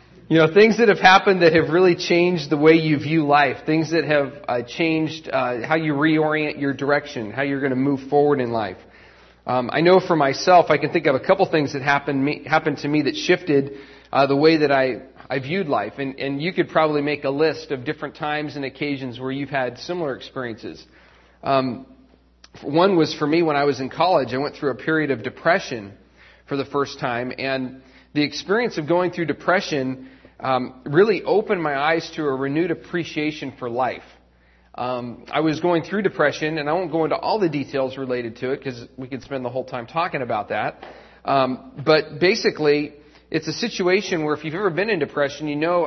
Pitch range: 135-165 Hz